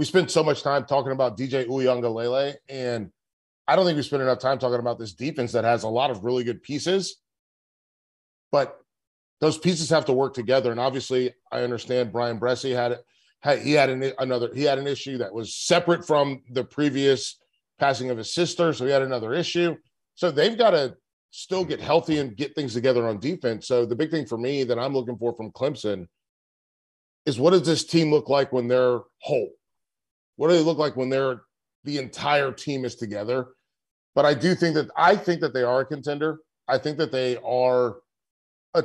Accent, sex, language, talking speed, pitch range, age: American, male, English, 200 wpm, 120-150 Hz, 40-59